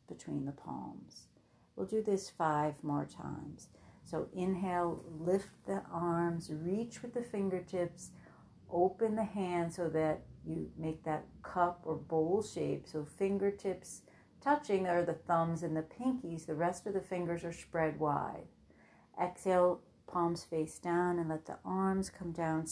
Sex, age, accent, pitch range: female, 60-79, American, 155-185 Hz